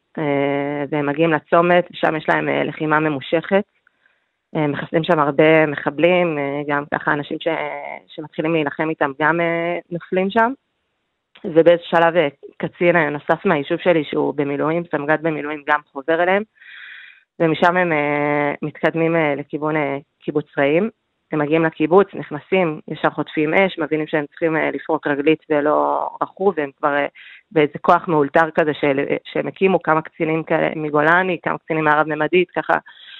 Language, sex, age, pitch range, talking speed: Hebrew, female, 20-39, 145-170 Hz, 145 wpm